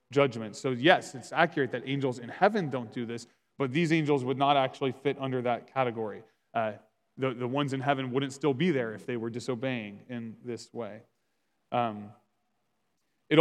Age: 20-39